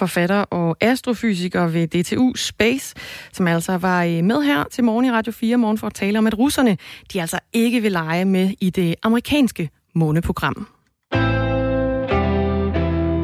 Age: 30-49